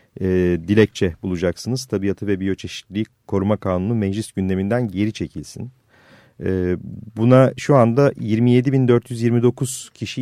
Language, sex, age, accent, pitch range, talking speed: Turkish, male, 40-59, native, 100-130 Hz, 105 wpm